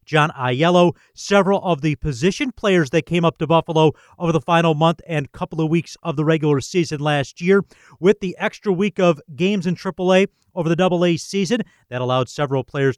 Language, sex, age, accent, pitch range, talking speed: English, male, 40-59, American, 150-180 Hz, 195 wpm